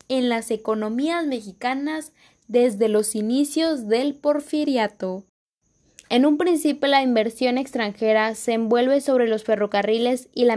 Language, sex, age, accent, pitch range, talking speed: Spanish, female, 10-29, Mexican, 220-270 Hz, 125 wpm